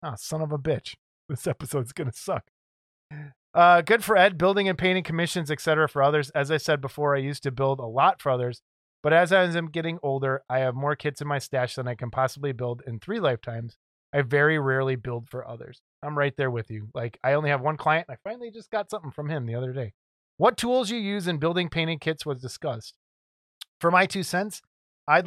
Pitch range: 130-170 Hz